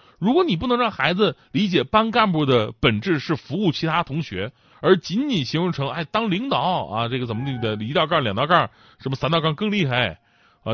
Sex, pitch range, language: male, 115-170 Hz, Chinese